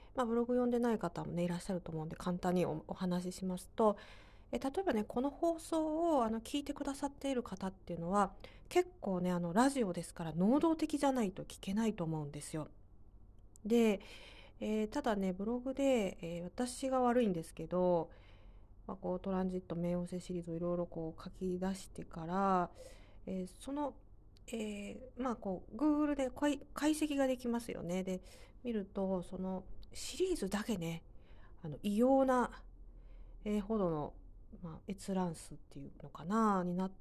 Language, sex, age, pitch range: Japanese, female, 40-59, 175-240 Hz